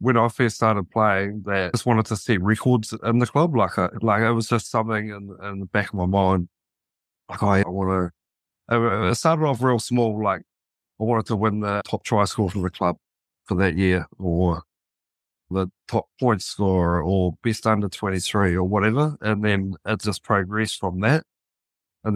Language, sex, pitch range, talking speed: English, male, 95-115 Hz, 195 wpm